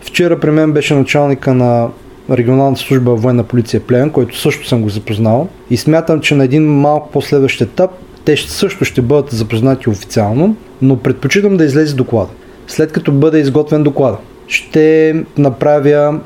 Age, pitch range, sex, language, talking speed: 30-49, 125-155 Hz, male, Bulgarian, 155 wpm